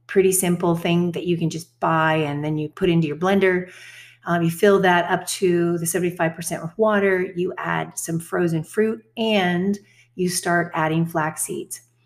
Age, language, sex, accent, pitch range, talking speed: 40-59, English, female, American, 160-190 Hz, 185 wpm